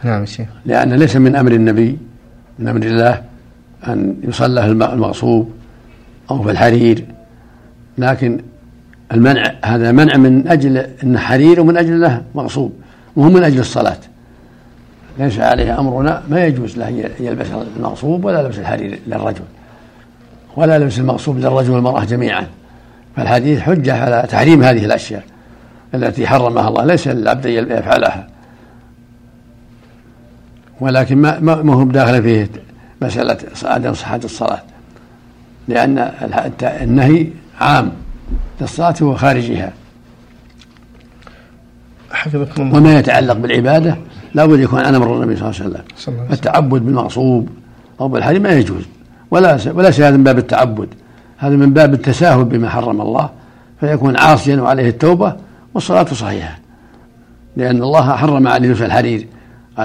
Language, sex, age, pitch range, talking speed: Arabic, male, 60-79, 115-140 Hz, 125 wpm